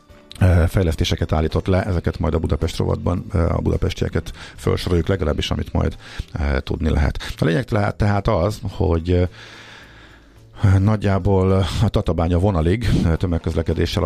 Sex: male